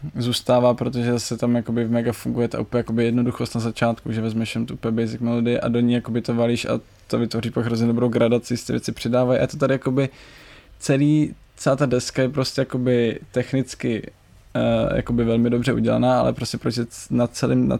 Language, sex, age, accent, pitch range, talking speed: Czech, male, 20-39, native, 115-120 Hz, 180 wpm